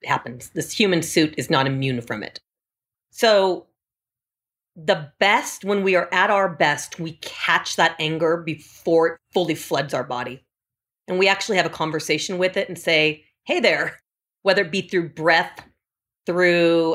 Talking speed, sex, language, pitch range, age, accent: 165 wpm, female, English, 155-205 Hz, 40-59, American